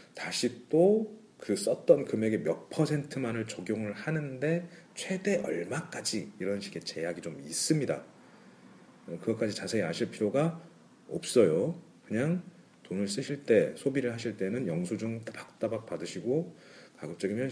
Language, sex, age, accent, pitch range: Korean, male, 40-59, native, 110-155 Hz